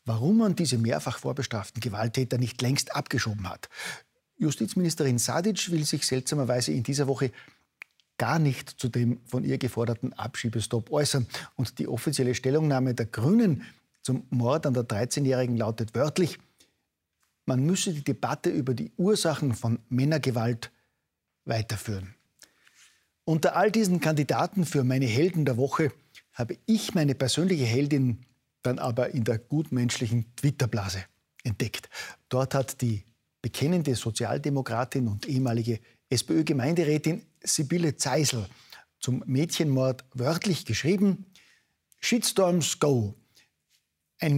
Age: 50-69